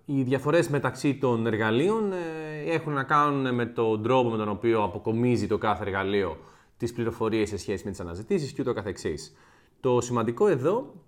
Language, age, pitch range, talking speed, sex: Greek, 30-49, 105-135 Hz, 155 wpm, male